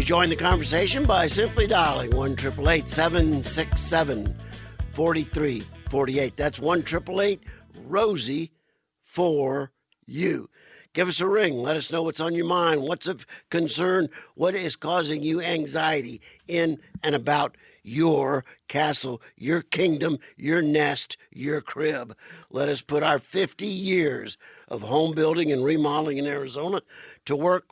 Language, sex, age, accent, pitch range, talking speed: English, male, 50-69, American, 135-165 Hz, 130 wpm